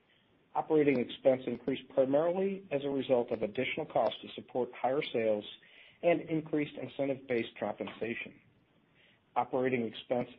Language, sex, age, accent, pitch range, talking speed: English, male, 50-69, American, 115-150 Hz, 115 wpm